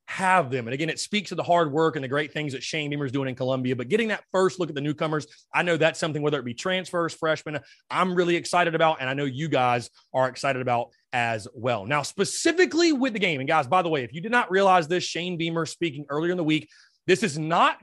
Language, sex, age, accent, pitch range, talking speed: English, male, 30-49, American, 140-185 Hz, 265 wpm